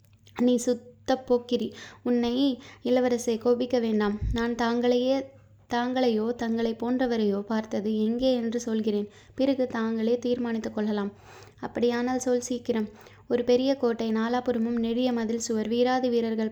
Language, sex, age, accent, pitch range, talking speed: Tamil, female, 20-39, native, 225-245 Hz, 115 wpm